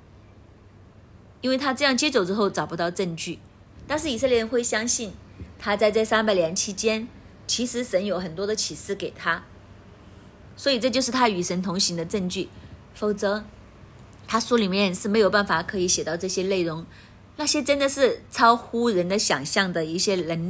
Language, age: Chinese, 30-49